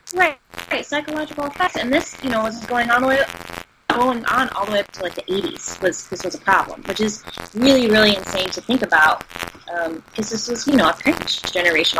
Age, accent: 20-39, American